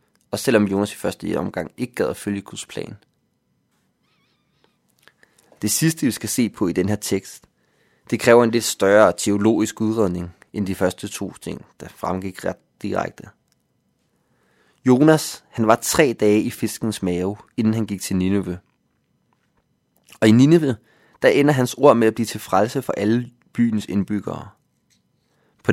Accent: native